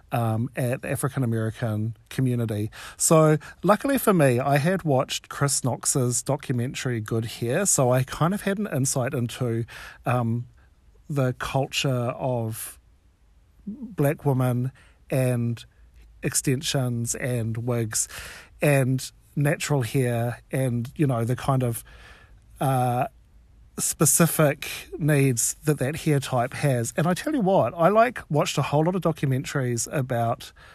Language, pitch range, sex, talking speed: English, 115-150 Hz, male, 130 wpm